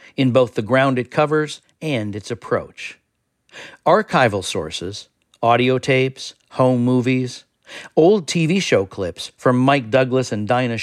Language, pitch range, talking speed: English, 110-140 Hz, 135 wpm